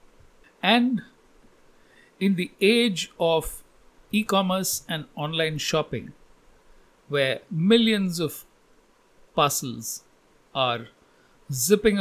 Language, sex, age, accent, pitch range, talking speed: English, male, 50-69, Indian, 150-210 Hz, 75 wpm